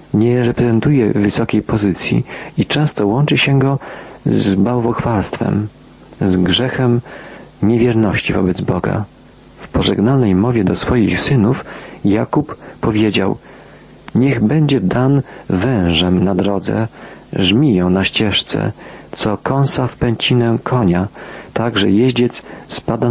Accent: native